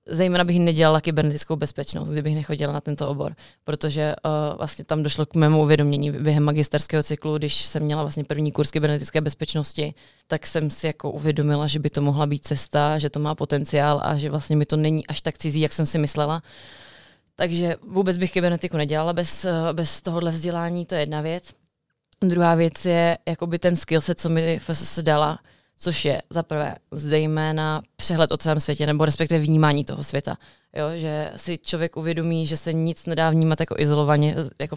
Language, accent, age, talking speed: Czech, native, 20-39, 185 wpm